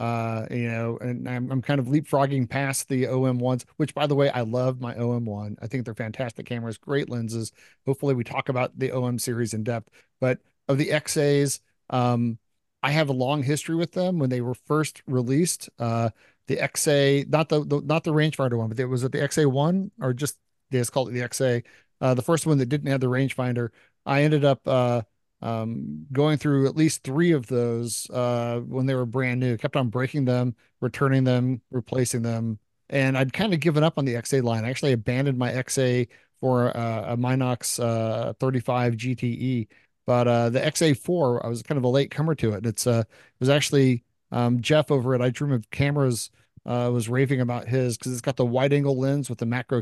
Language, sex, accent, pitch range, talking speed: English, male, American, 120-140 Hz, 215 wpm